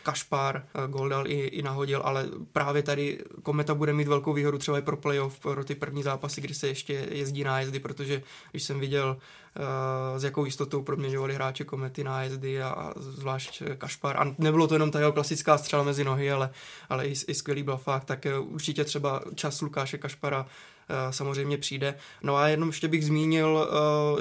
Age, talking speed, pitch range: 20-39, 185 wpm, 135-150 Hz